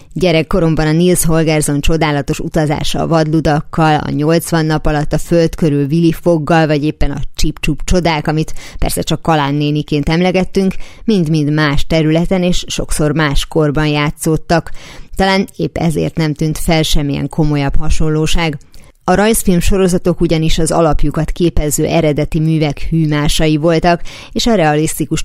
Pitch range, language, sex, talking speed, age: 150-170 Hz, Hungarian, female, 135 wpm, 30-49